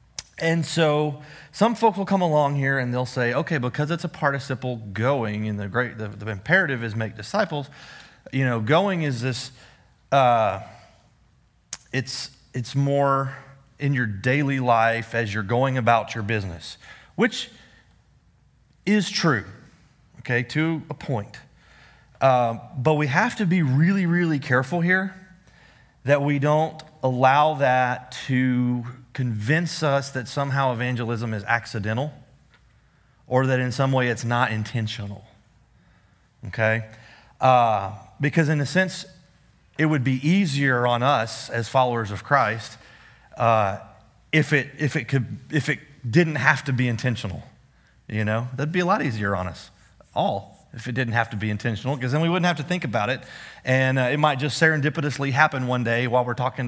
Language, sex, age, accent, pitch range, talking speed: English, male, 30-49, American, 115-150 Hz, 160 wpm